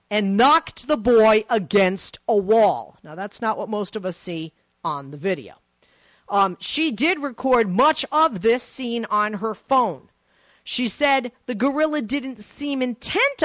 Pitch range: 205-275 Hz